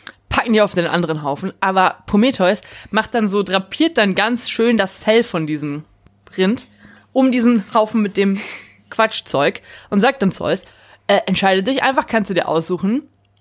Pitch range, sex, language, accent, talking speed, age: 170-225 Hz, female, German, German, 170 wpm, 20-39